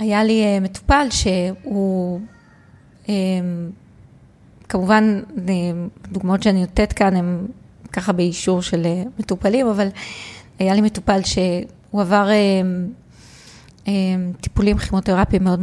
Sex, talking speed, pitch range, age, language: female, 90 wpm, 185-225 Hz, 20-39, Hebrew